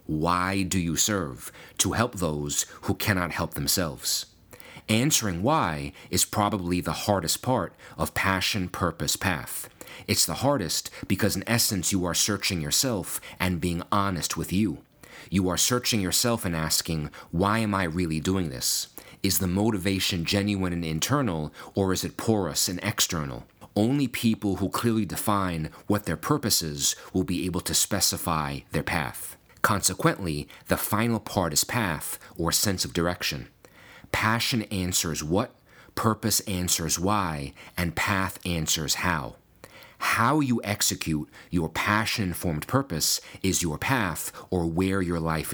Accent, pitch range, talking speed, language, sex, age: American, 85-105 Hz, 145 wpm, English, male, 40-59